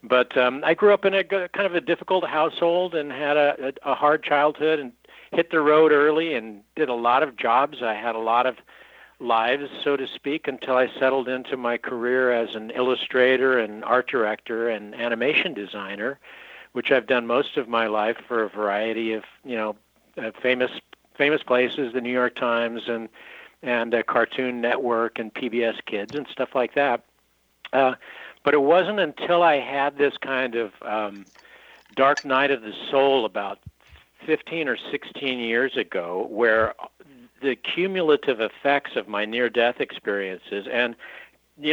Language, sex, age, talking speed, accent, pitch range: English, male, 60-79, 170 wpm, American, 115-150 Hz